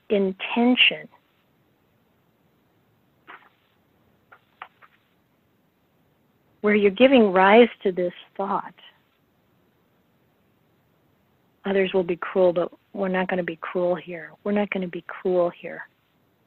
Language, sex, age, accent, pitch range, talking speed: English, female, 50-69, American, 180-220 Hz, 100 wpm